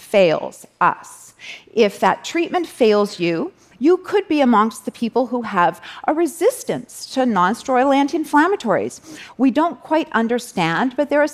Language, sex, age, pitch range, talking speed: Arabic, female, 40-59, 180-260 Hz, 150 wpm